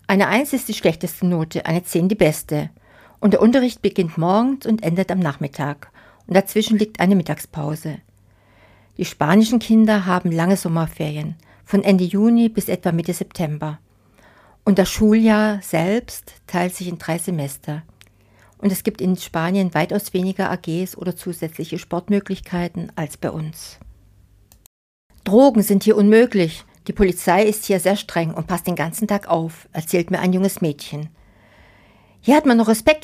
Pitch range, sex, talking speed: 160-210 Hz, female, 155 wpm